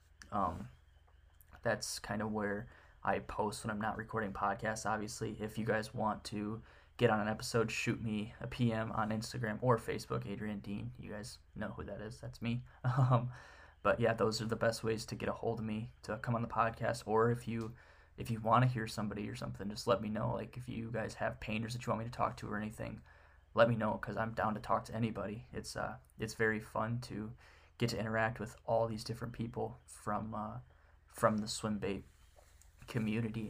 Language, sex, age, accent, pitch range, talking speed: English, male, 10-29, American, 105-115 Hz, 215 wpm